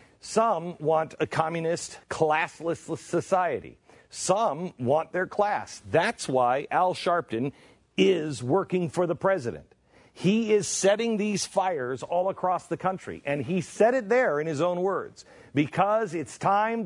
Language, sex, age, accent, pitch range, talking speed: English, male, 50-69, American, 110-175 Hz, 140 wpm